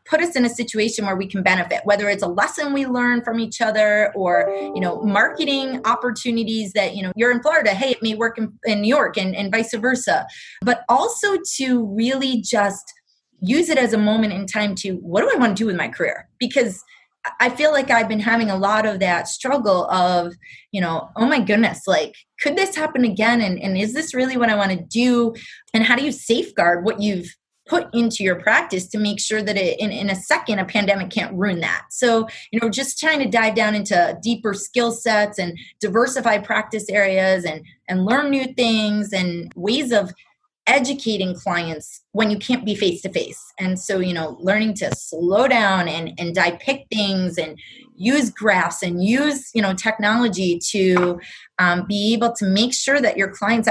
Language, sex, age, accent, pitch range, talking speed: English, female, 20-39, American, 190-240 Hz, 205 wpm